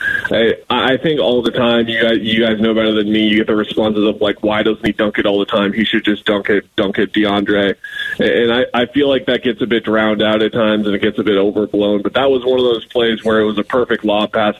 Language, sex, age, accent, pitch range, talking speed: English, male, 20-39, American, 105-120 Hz, 290 wpm